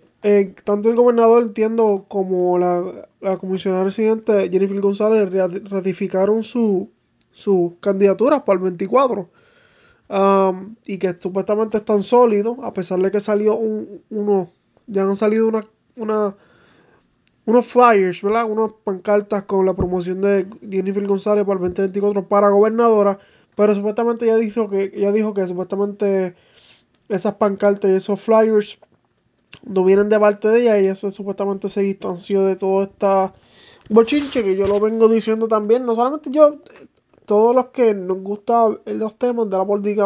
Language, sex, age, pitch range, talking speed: English, male, 20-39, 195-225 Hz, 155 wpm